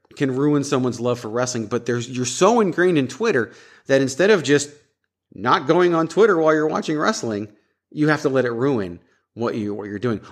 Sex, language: male, English